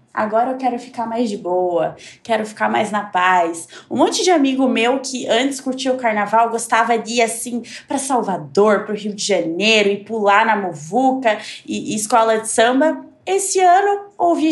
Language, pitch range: Portuguese, 190-260 Hz